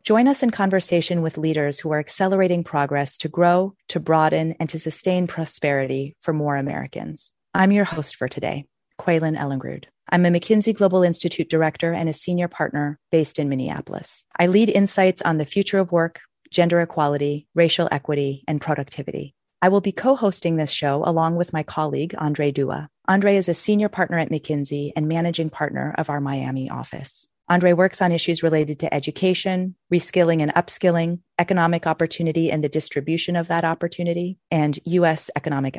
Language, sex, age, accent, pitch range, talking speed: English, female, 30-49, American, 150-180 Hz, 170 wpm